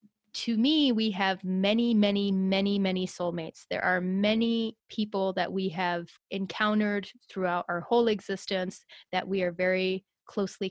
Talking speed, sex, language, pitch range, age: 145 wpm, female, English, 185-215 Hz, 30-49